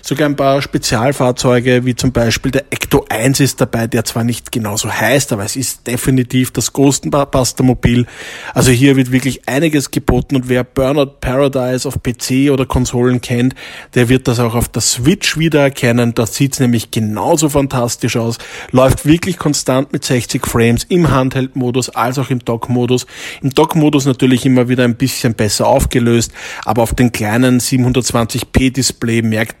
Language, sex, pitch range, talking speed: German, male, 120-140 Hz, 165 wpm